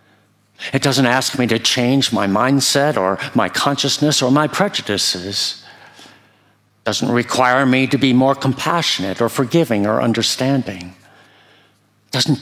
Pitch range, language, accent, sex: 105-125 Hz, English, American, male